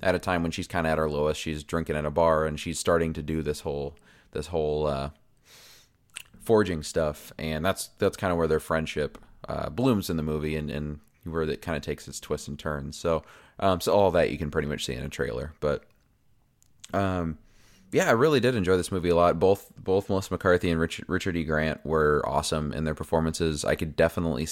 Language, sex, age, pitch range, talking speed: English, male, 20-39, 80-95 Hz, 225 wpm